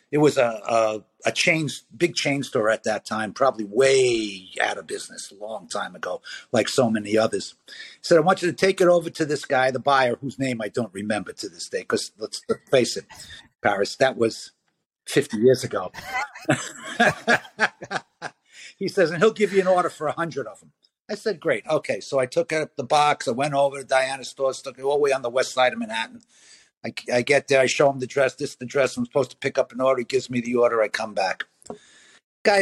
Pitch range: 125-160 Hz